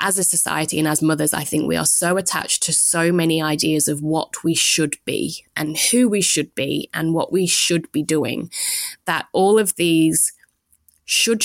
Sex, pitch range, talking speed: female, 155-180 Hz, 195 wpm